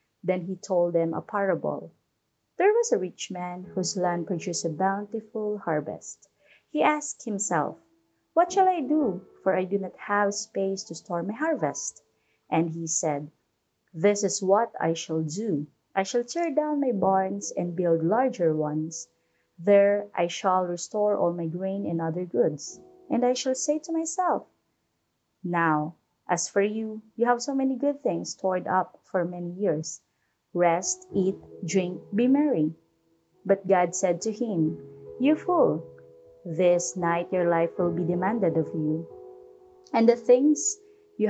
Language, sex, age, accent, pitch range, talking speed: English, female, 30-49, Filipino, 170-240 Hz, 160 wpm